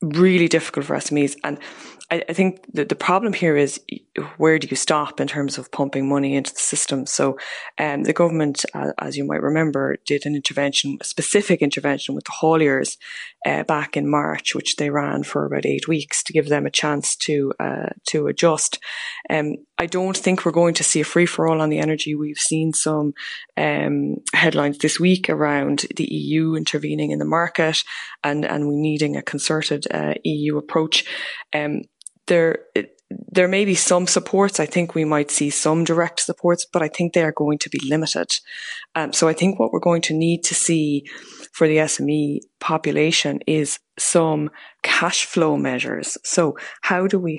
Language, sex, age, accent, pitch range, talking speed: English, female, 20-39, Irish, 145-175 Hz, 185 wpm